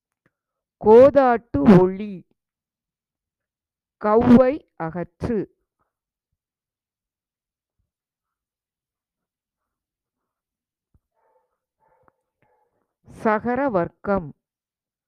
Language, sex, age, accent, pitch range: Tamil, female, 50-69, native, 200-280 Hz